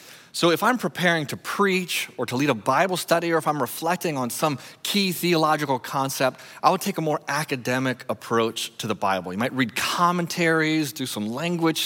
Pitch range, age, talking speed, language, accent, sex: 115-155 Hz, 30-49, 190 wpm, English, American, male